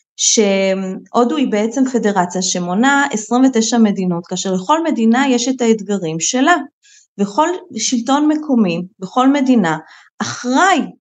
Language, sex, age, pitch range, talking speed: Hebrew, female, 20-39, 220-295 Hz, 115 wpm